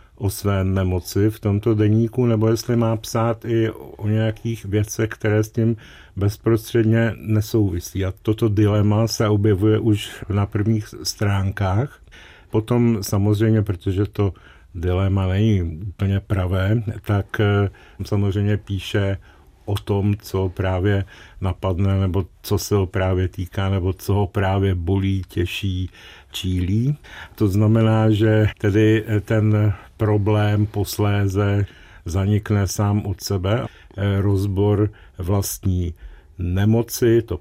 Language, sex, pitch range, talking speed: Czech, male, 95-110 Hz, 115 wpm